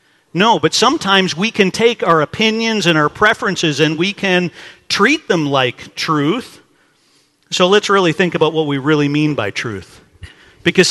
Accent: American